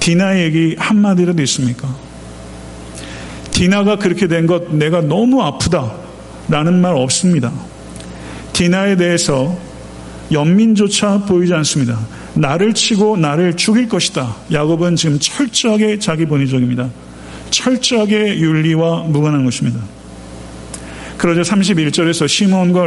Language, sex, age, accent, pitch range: Korean, male, 40-59, native, 130-180 Hz